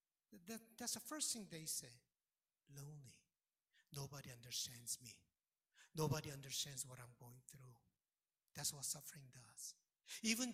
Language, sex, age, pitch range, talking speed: English, male, 60-79, 140-205 Hz, 120 wpm